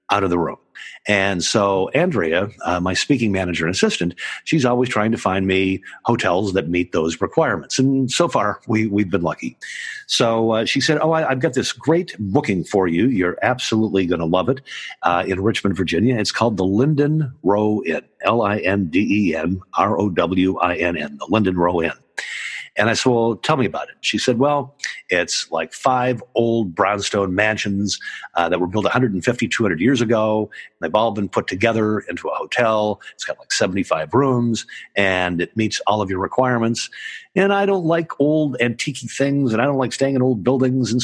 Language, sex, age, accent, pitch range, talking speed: English, male, 50-69, American, 95-130 Hz, 185 wpm